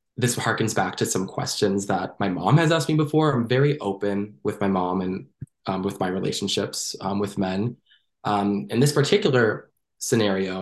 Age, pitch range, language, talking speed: 20-39, 100-125 Hz, English, 180 wpm